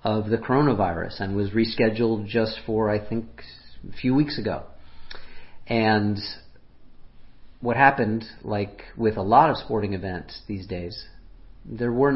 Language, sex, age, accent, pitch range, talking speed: English, male, 40-59, American, 100-125 Hz, 140 wpm